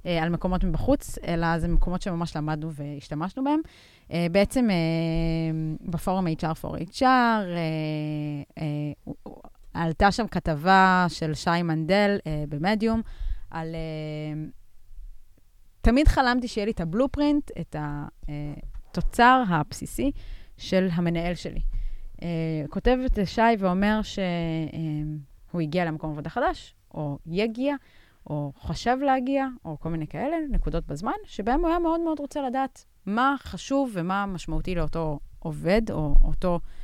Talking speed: 115 wpm